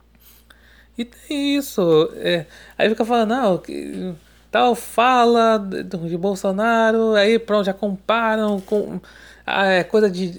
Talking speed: 135 wpm